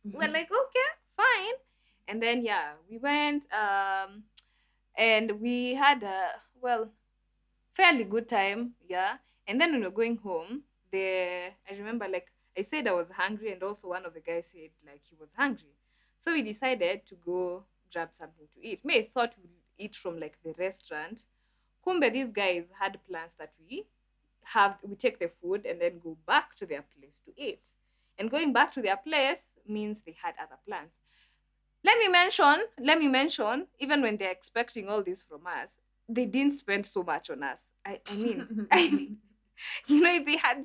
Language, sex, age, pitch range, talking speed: English, female, 20-39, 195-285 Hz, 185 wpm